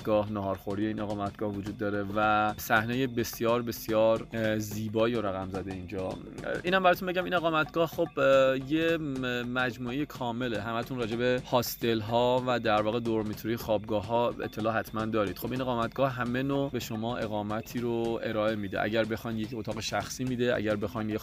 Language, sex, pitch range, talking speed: Persian, male, 105-120 Hz, 160 wpm